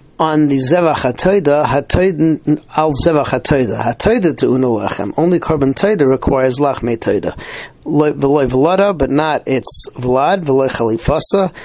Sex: male